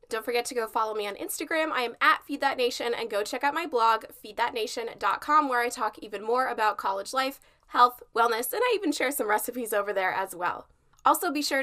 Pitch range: 225-285 Hz